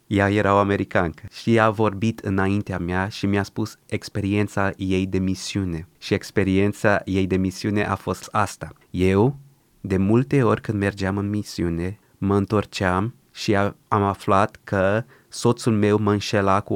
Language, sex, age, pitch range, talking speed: Romanian, male, 20-39, 95-110 Hz, 160 wpm